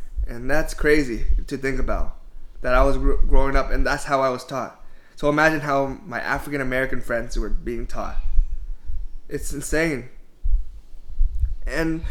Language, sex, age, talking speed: English, male, 20-39, 150 wpm